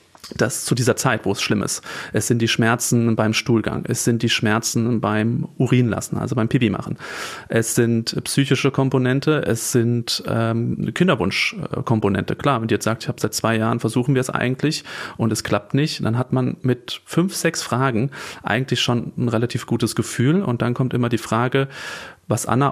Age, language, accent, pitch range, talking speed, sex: 30-49, German, German, 110-130 Hz, 190 wpm, male